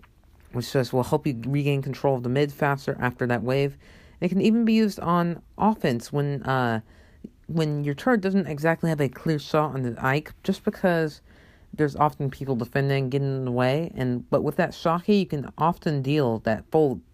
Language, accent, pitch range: English, American, 120-165 Hz